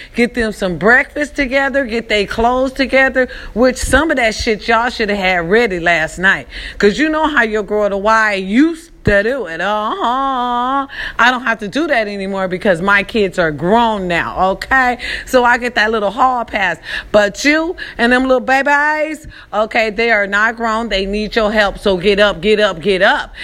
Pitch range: 200-260 Hz